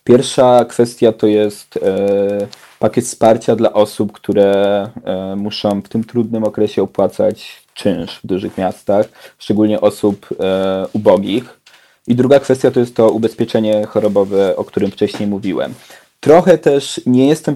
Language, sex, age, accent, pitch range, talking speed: Polish, male, 20-39, native, 100-120 Hz, 130 wpm